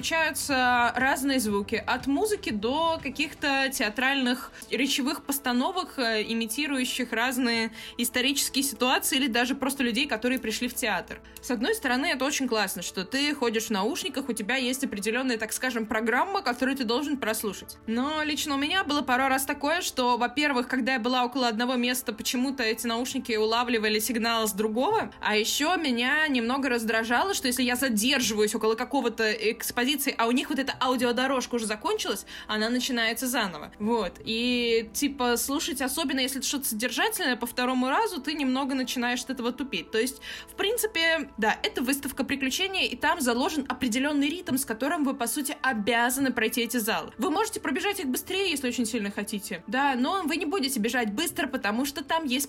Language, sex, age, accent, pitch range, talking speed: Russian, female, 20-39, native, 235-280 Hz, 170 wpm